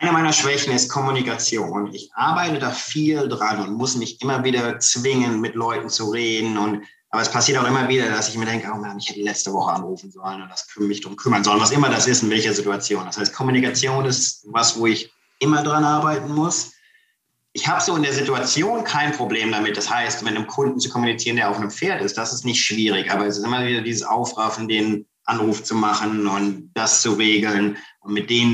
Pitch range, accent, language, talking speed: 110-130 Hz, German, German, 215 wpm